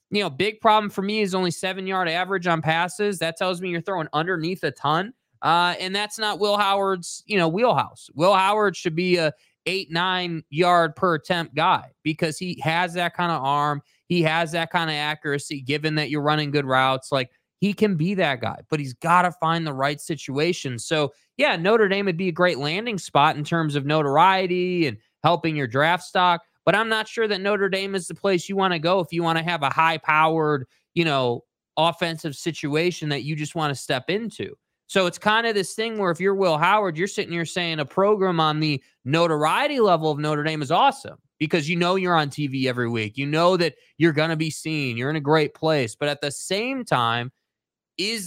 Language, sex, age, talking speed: English, male, 20-39, 220 wpm